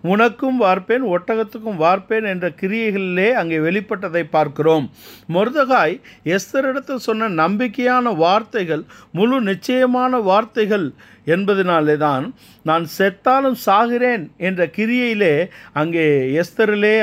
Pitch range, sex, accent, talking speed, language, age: 170-230 Hz, male, native, 90 wpm, Tamil, 50-69